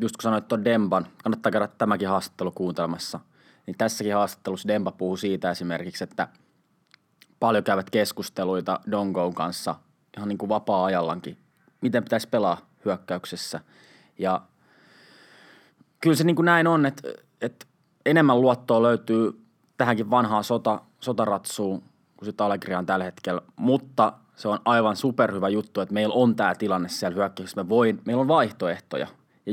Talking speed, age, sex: 145 wpm, 20-39, male